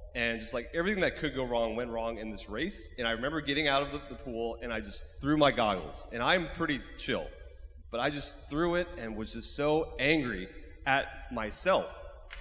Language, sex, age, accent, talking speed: English, male, 30-49, American, 215 wpm